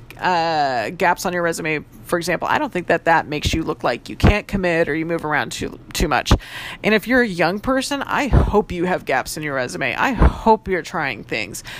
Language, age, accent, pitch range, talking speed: English, 30-49, American, 160-215 Hz, 250 wpm